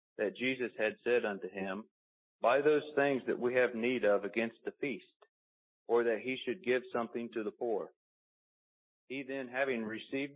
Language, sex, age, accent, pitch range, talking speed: English, male, 40-59, American, 105-135 Hz, 175 wpm